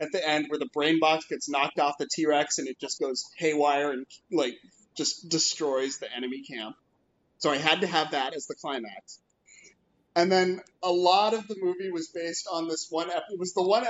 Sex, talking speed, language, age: male, 215 wpm, English, 30-49